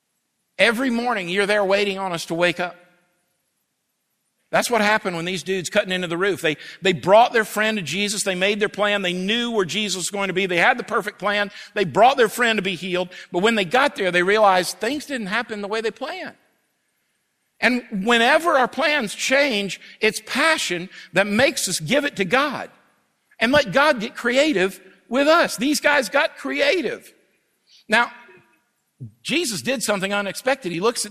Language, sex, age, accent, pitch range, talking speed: English, male, 50-69, American, 185-250 Hz, 190 wpm